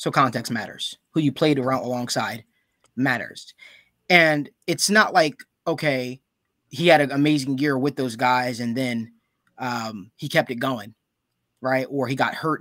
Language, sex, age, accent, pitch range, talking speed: English, male, 20-39, American, 125-150 Hz, 160 wpm